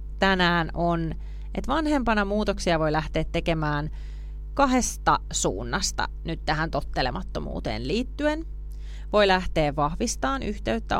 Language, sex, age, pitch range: Finnish, female, 30-49, 145-205 Hz